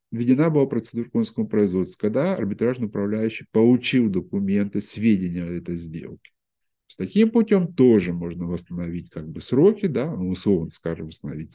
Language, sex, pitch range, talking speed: Russian, male, 90-150 Hz, 140 wpm